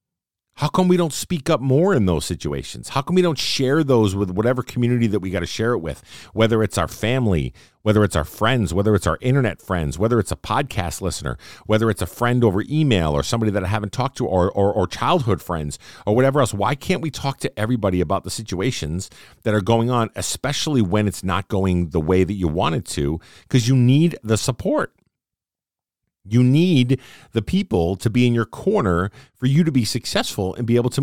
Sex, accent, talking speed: male, American, 220 wpm